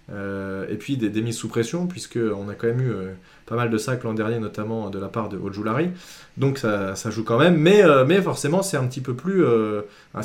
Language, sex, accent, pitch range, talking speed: French, male, French, 115-160 Hz, 245 wpm